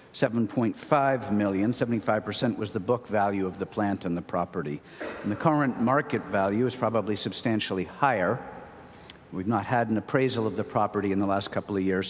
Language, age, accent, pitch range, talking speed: English, 50-69, American, 105-130 Hz, 180 wpm